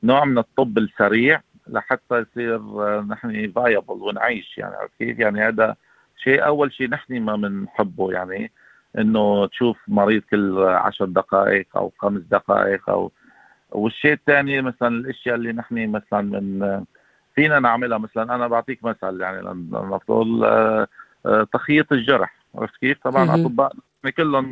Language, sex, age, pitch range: Arabic, male, 50-69, 100-130 Hz